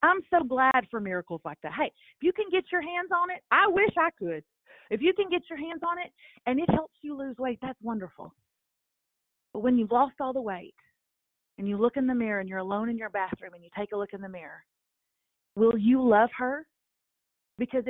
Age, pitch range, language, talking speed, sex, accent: 40-59, 215-285 Hz, English, 230 wpm, female, American